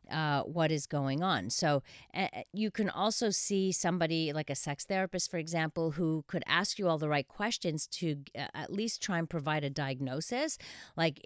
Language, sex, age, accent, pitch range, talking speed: English, female, 40-59, American, 145-190 Hz, 190 wpm